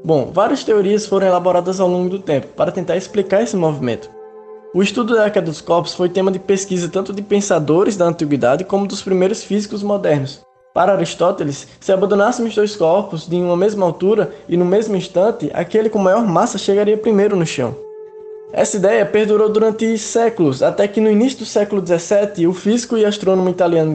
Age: 10-29